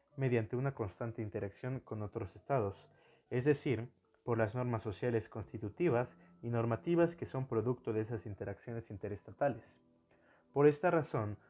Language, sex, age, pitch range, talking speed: Spanish, male, 30-49, 105-125 Hz, 135 wpm